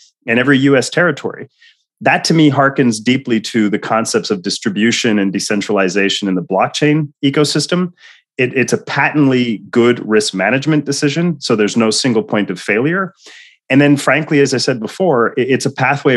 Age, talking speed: 30-49, 165 wpm